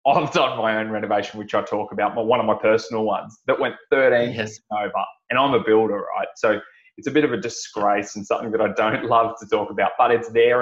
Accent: Australian